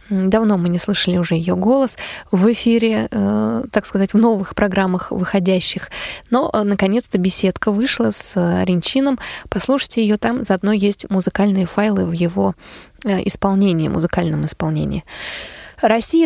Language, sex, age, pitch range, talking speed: Russian, female, 20-39, 195-235 Hz, 125 wpm